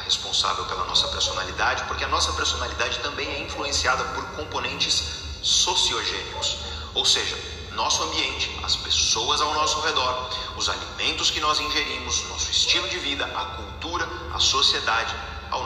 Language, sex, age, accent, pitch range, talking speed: Portuguese, male, 40-59, Brazilian, 80-100 Hz, 140 wpm